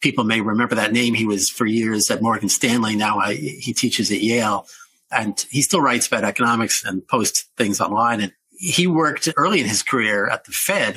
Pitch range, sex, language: 110-145 Hz, male, English